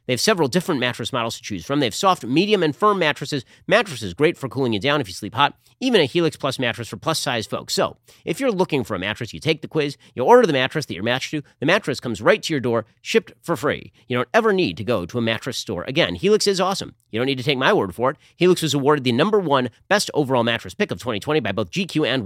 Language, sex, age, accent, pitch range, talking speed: English, male, 40-59, American, 115-160 Hz, 275 wpm